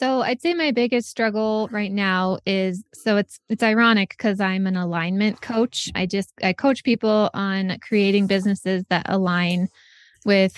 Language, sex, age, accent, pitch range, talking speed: English, female, 20-39, American, 180-215 Hz, 165 wpm